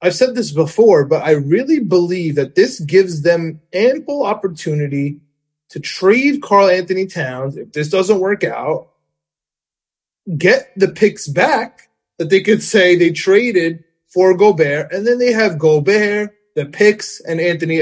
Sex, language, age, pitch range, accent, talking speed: male, English, 20-39, 160-205 Hz, American, 150 wpm